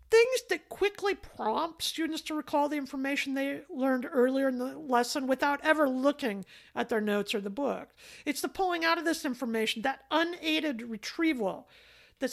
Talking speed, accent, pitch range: 170 wpm, American, 215-305 Hz